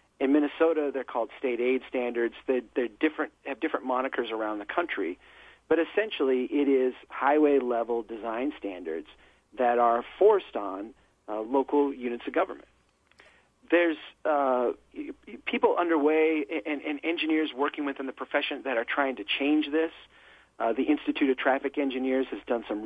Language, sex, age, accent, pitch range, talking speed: English, male, 40-59, American, 120-155 Hz, 150 wpm